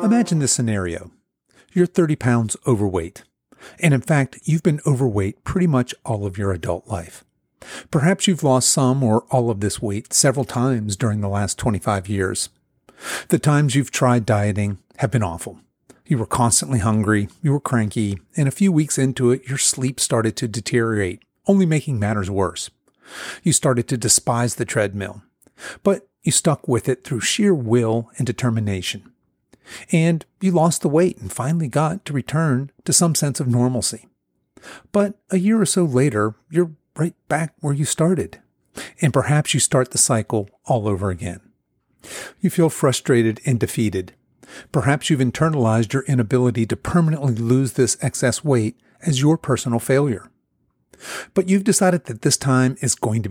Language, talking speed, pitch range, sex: English, 165 wpm, 110-155 Hz, male